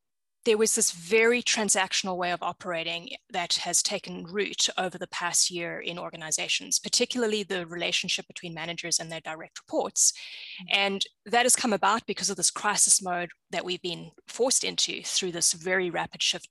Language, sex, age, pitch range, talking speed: English, female, 20-39, 180-225 Hz, 170 wpm